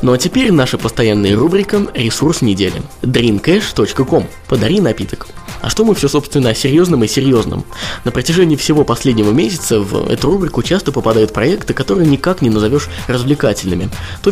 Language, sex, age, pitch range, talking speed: Russian, male, 20-39, 105-150 Hz, 155 wpm